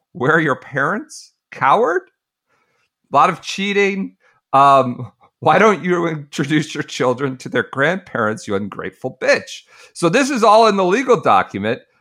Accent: American